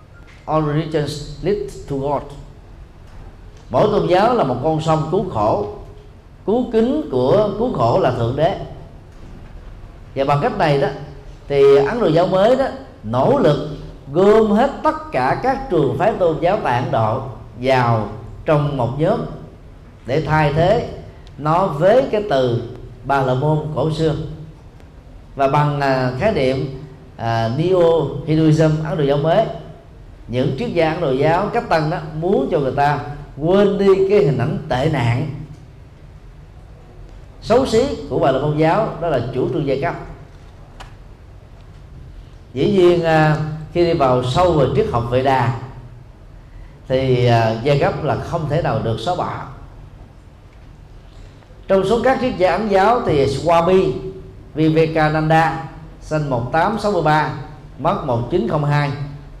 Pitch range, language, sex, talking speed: 125-160 Hz, Vietnamese, male, 140 wpm